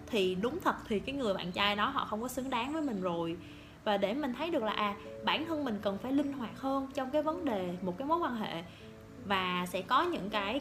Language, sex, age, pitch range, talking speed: Vietnamese, female, 20-39, 210-300 Hz, 260 wpm